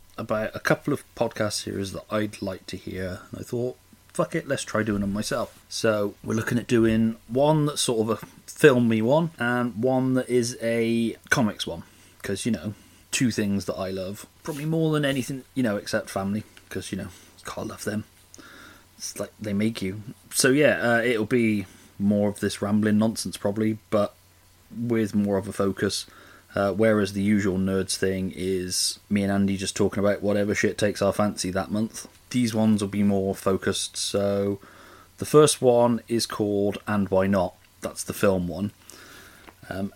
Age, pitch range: 30-49, 95-115 Hz